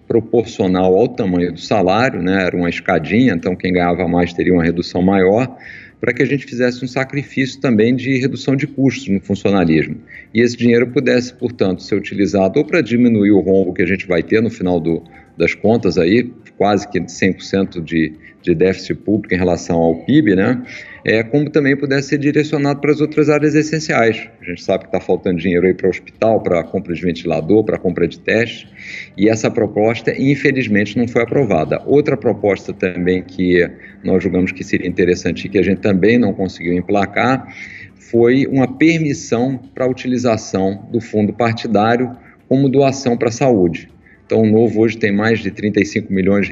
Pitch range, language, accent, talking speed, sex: 95-130 Hz, Portuguese, Brazilian, 185 wpm, male